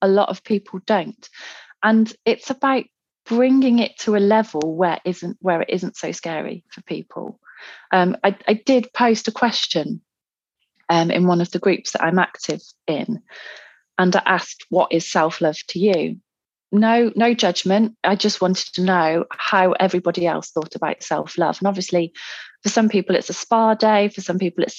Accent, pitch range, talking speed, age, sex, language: British, 175-220 Hz, 180 wpm, 30-49, female, English